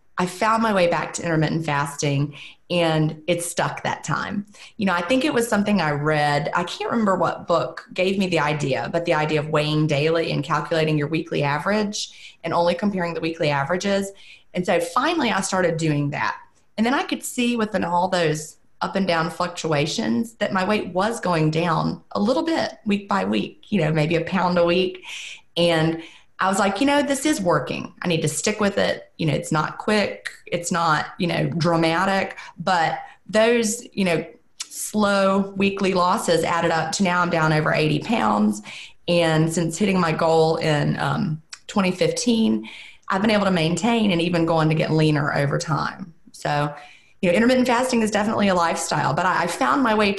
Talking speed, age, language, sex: 195 wpm, 30-49, English, female